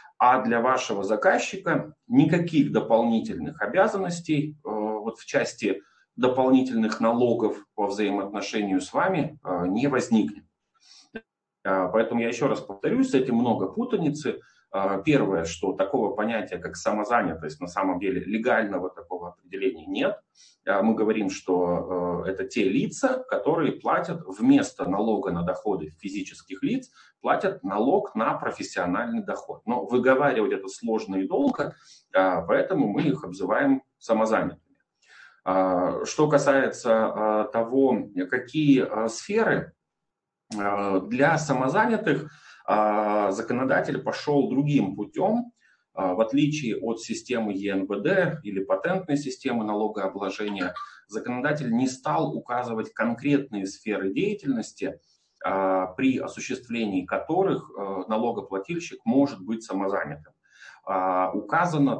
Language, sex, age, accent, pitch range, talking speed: Russian, male, 30-49, native, 105-170 Hz, 100 wpm